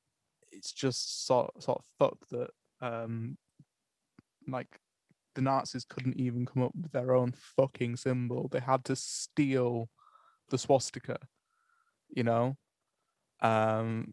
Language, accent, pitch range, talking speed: English, British, 115-130 Hz, 125 wpm